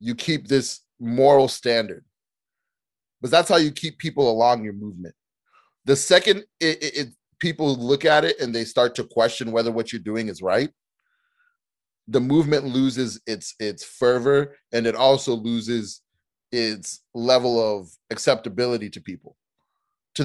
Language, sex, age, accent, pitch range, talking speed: English, male, 30-49, American, 115-150 Hz, 150 wpm